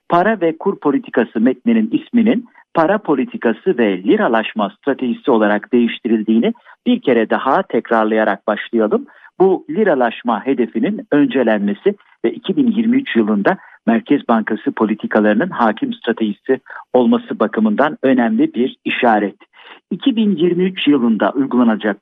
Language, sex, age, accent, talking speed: Turkish, male, 50-69, native, 105 wpm